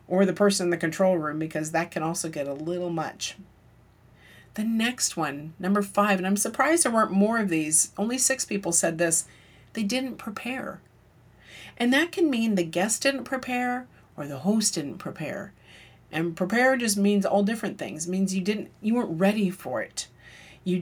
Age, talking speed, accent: 40-59, 185 wpm, American